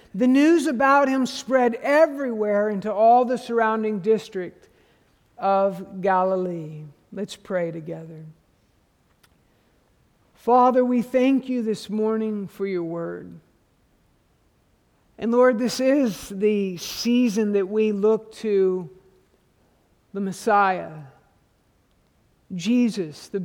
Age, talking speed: 50-69, 100 wpm